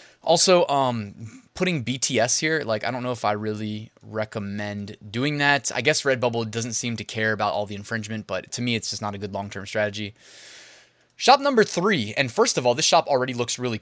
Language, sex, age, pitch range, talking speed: English, male, 20-39, 110-140 Hz, 210 wpm